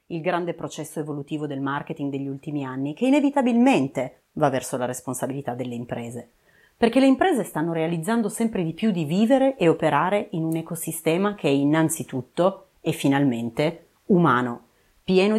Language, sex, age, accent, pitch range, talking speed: Italian, female, 30-49, native, 145-210 Hz, 150 wpm